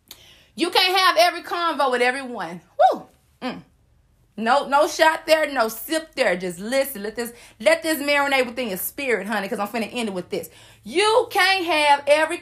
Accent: American